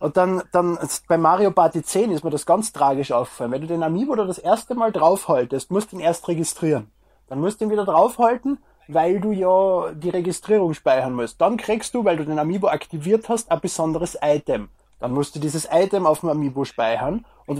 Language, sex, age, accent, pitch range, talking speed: German, male, 20-39, German, 150-215 Hz, 210 wpm